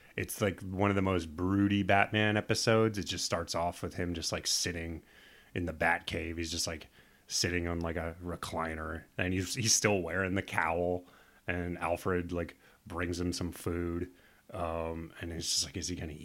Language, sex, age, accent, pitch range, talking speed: English, male, 30-49, American, 85-105 Hz, 190 wpm